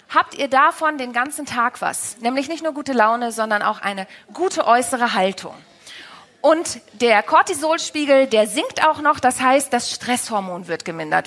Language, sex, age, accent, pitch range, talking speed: German, female, 30-49, German, 235-335 Hz, 165 wpm